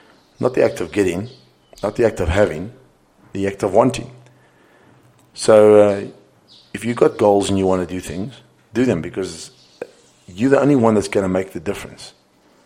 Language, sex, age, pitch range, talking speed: English, male, 40-59, 90-105 Hz, 185 wpm